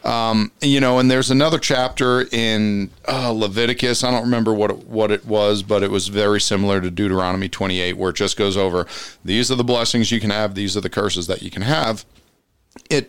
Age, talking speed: 40-59, 215 wpm